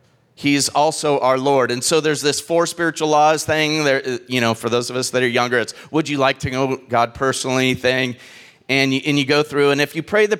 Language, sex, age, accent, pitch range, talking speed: English, male, 30-49, American, 115-150 Hz, 235 wpm